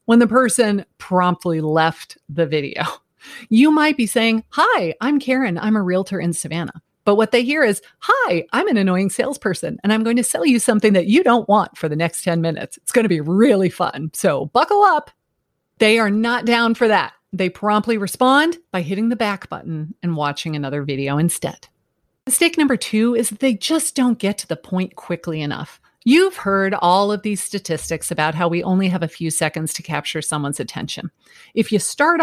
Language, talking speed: English, 200 wpm